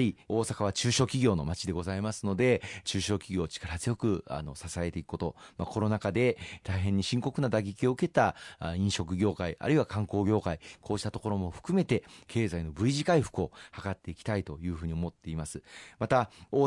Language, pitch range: Japanese, 90-120 Hz